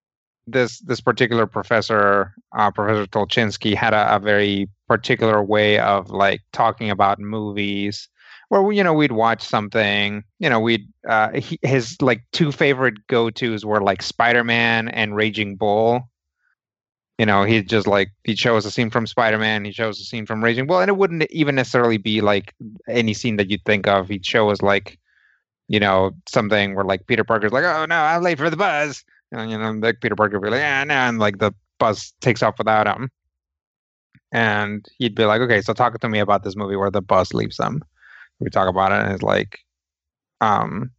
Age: 30-49